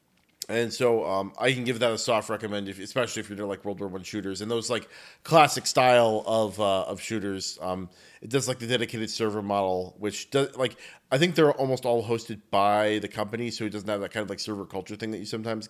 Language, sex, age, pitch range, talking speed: English, male, 30-49, 100-120 Hz, 240 wpm